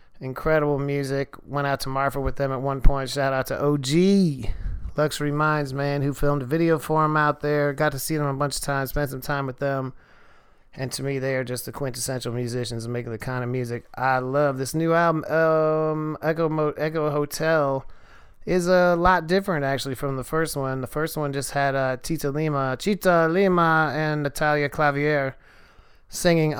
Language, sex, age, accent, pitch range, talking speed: English, male, 30-49, American, 130-150 Hz, 195 wpm